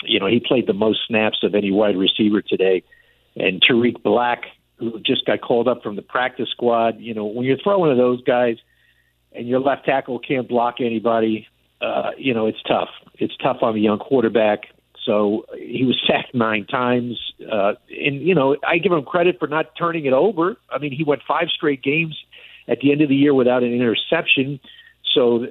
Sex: male